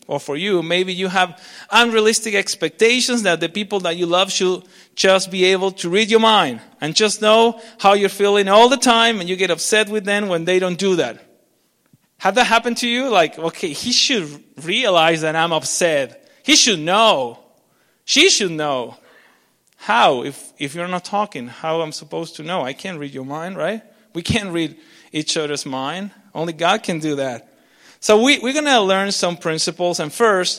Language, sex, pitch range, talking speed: English, male, 175-225 Hz, 195 wpm